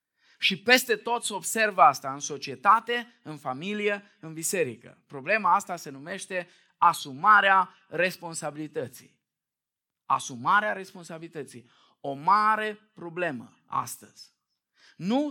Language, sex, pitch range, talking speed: Romanian, male, 155-220 Hz, 100 wpm